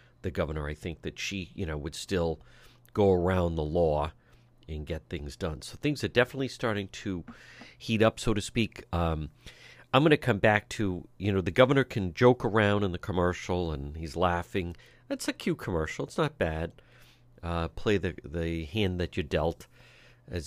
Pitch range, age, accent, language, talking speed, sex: 85-120 Hz, 50-69, American, English, 190 wpm, male